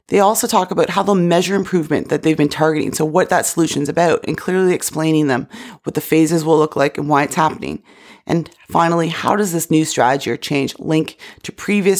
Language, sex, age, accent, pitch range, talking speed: English, female, 30-49, American, 150-180 Hz, 220 wpm